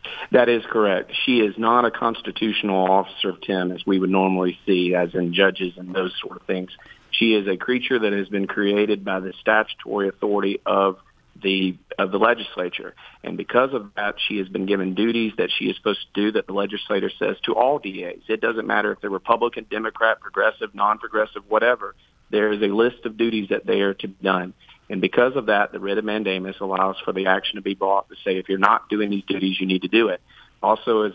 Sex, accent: male, American